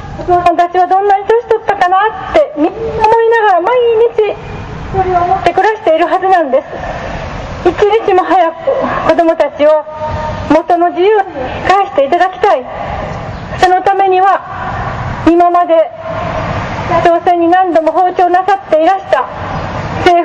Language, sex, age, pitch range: Japanese, female, 40-59, 320-375 Hz